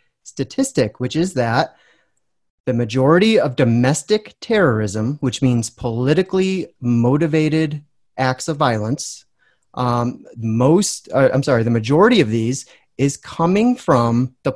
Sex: male